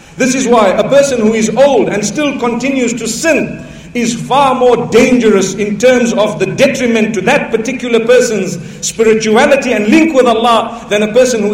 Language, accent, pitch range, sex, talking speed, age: English, South African, 195-250 Hz, male, 180 wpm, 50-69